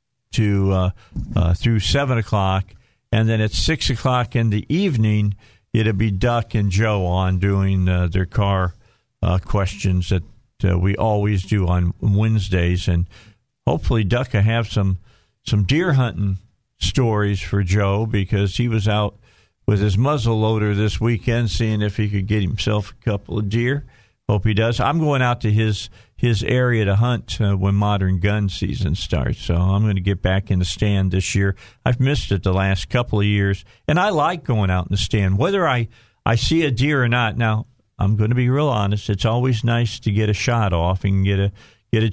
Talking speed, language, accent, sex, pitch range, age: 195 wpm, English, American, male, 100-120 Hz, 50-69